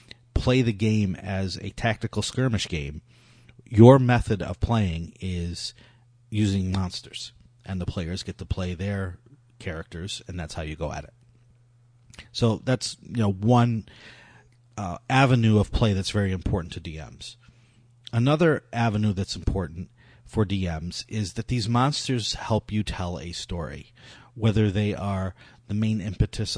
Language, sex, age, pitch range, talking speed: English, male, 30-49, 95-120 Hz, 145 wpm